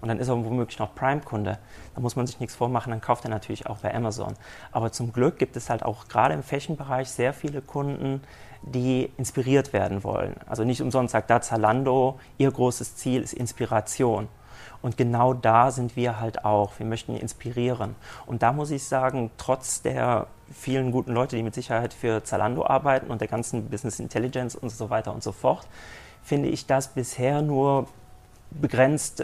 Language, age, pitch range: German, 40-59, 110-130 Hz